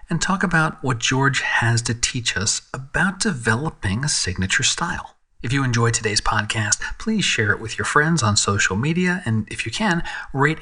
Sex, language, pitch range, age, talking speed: male, English, 105-145 Hz, 40-59, 185 wpm